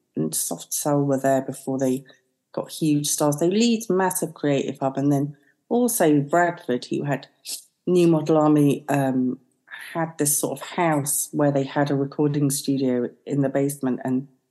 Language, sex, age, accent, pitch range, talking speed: English, female, 40-59, British, 130-150 Hz, 165 wpm